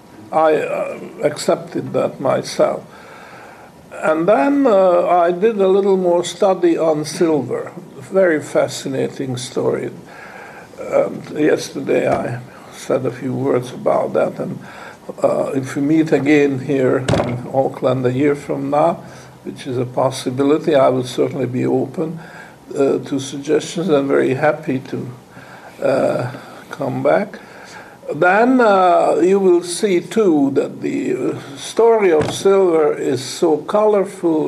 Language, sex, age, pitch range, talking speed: English, male, 60-79, 145-205 Hz, 125 wpm